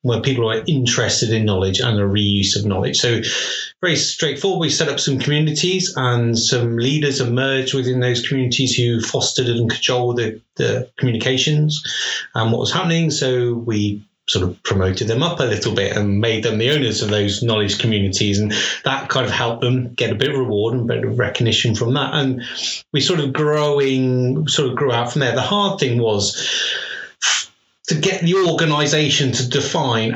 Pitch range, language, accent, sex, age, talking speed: 110-140 Hz, English, British, male, 30-49, 185 wpm